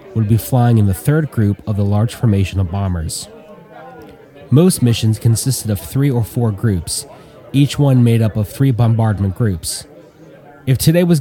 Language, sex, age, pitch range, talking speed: English, male, 30-49, 100-130 Hz, 170 wpm